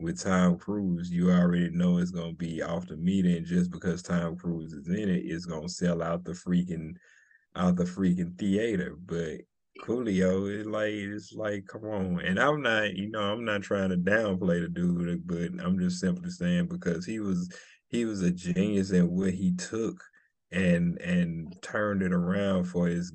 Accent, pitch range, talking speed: American, 90-145 Hz, 190 wpm